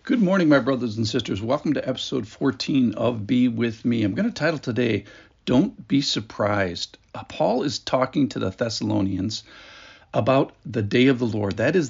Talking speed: 180 wpm